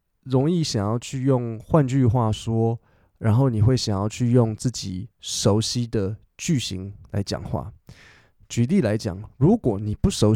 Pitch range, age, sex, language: 105-140 Hz, 20-39, male, Chinese